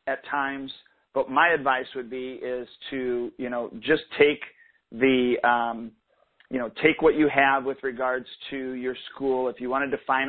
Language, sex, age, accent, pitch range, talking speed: English, male, 50-69, American, 120-150 Hz, 180 wpm